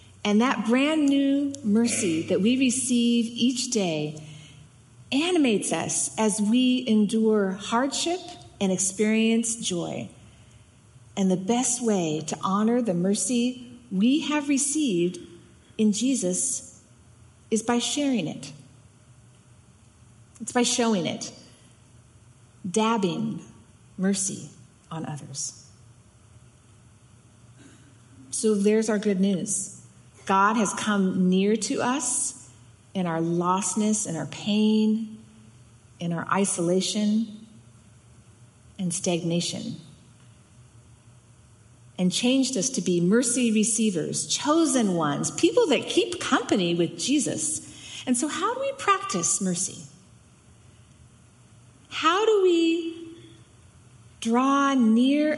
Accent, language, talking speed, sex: American, English, 100 wpm, female